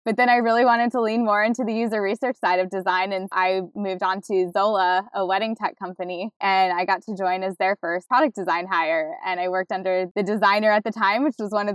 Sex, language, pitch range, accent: female, English, 180-205 Hz, American